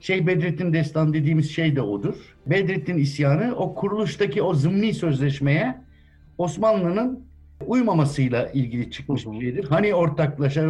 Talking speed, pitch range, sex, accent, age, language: 120 wpm, 135-185 Hz, male, native, 60-79, Turkish